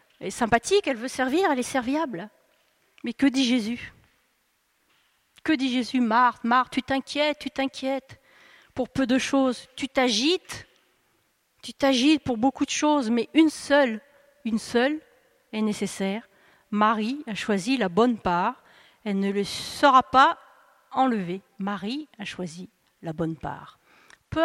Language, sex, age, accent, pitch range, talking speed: French, female, 40-59, French, 225-280 Hz, 145 wpm